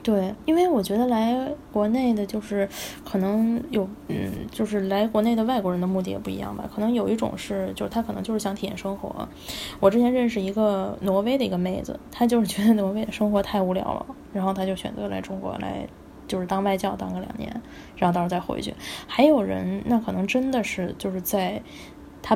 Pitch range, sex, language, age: 185-215 Hz, female, Chinese, 10-29